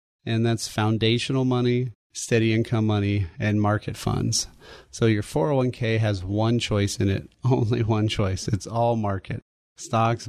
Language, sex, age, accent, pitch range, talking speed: English, male, 30-49, American, 105-120 Hz, 145 wpm